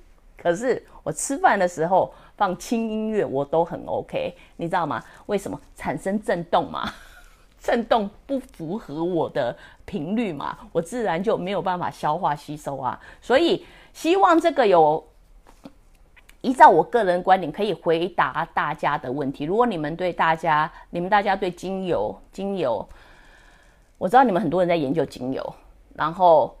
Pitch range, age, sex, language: 165-230 Hz, 30-49, female, English